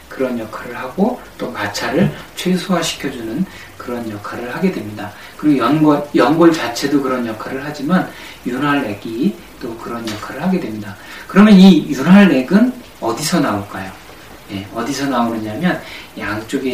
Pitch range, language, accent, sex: 115-180 Hz, Korean, native, male